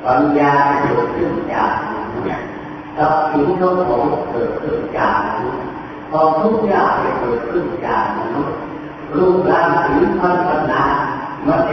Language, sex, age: Thai, female, 40-59